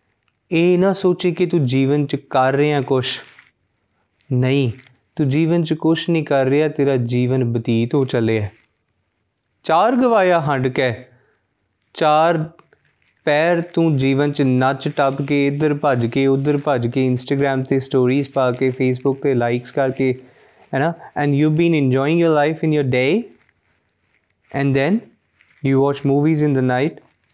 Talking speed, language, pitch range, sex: 150 wpm, Punjabi, 130-160 Hz, male